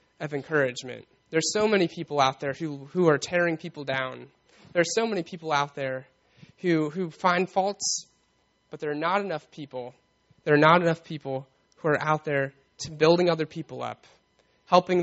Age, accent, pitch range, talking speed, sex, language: 20-39, American, 140-170 Hz, 185 wpm, male, English